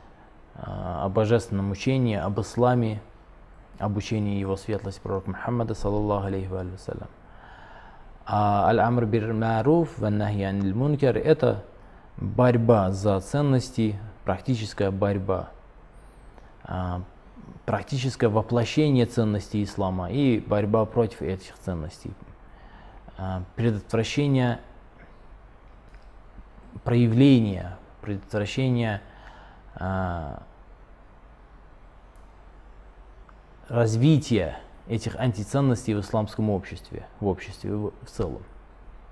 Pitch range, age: 95-120 Hz, 20-39